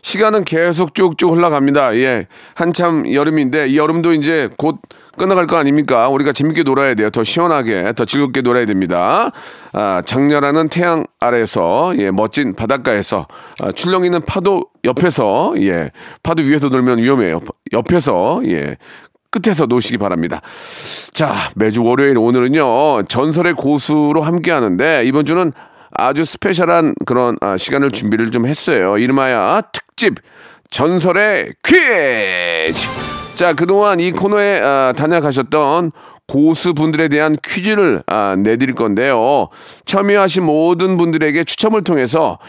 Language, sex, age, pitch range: Korean, male, 40-59, 135-185 Hz